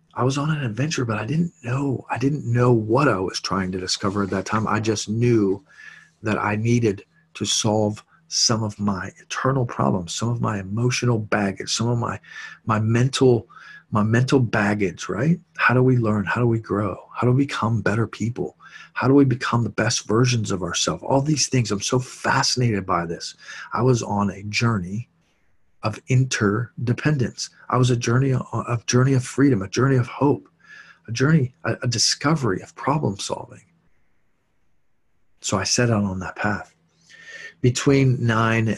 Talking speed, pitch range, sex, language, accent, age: 180 wpm, 105-125 Hz, male, English, American, 40-59